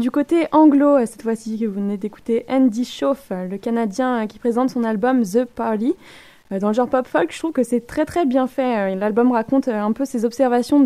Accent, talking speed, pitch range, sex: French, 205 wpm, 210-265 Hz, female